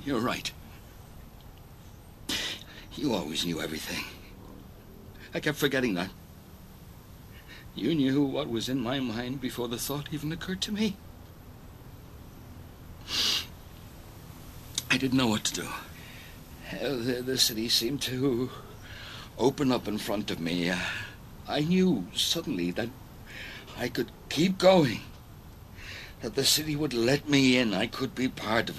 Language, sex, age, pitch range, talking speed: English, male, 60-79, 105-135 Hz, 125 wpm